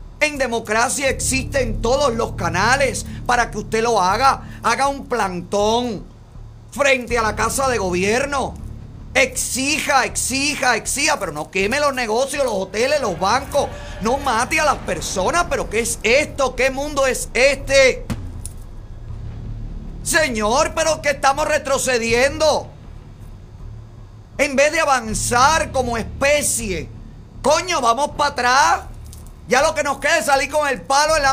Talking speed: 140 wpm